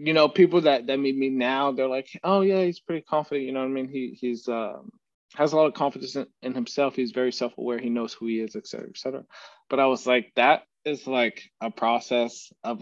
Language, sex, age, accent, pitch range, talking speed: English, male, 20-39, American, 120-140 Hz, 250 wpm